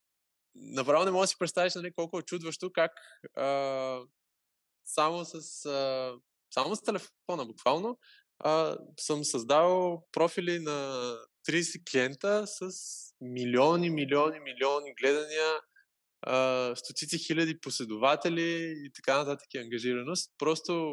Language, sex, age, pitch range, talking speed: Bulgarian, male, 20-39, 115-155 Hz, 110 wpm